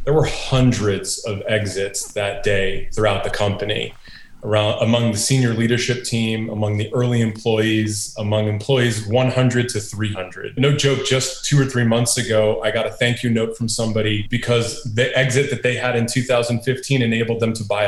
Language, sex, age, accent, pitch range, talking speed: English, male, 30-49, American, 110-130 Hz, 180 wpm